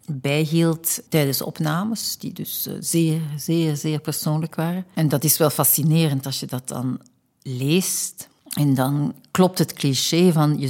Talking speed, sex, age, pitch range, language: 155 wpm, female, 60-79, 145-165 Hz, Dutch